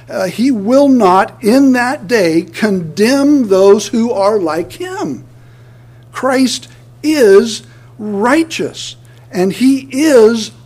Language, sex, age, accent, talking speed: English, male, 60-79, American, 105 wpm